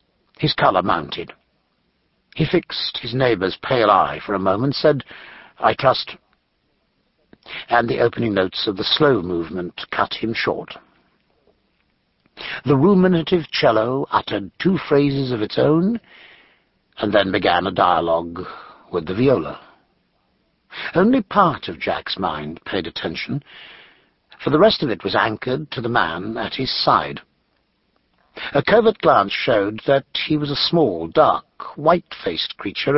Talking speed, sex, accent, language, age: 135 wpm, male, British, English, 60-79